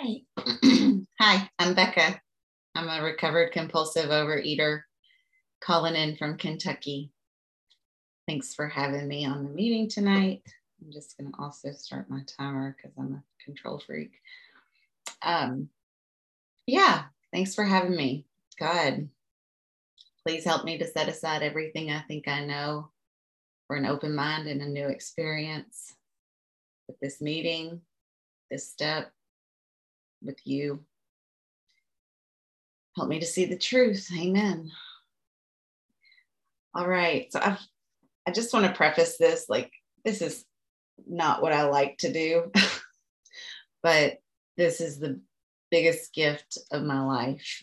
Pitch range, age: 140-180 Hz, 30-49